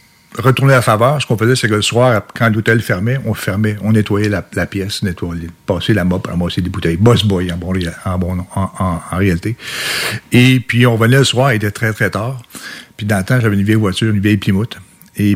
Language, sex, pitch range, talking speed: French, male, 100-120 Hz, 240 wpm